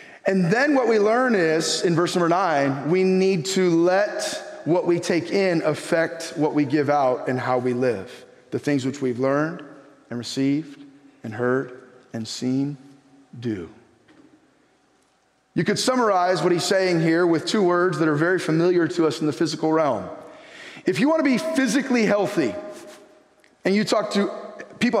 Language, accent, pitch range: English, American, 150-205 Hz